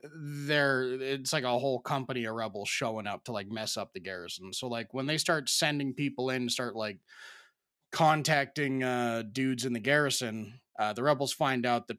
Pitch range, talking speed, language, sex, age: 110-140 Hz, 190 wpm, English, male, 20-39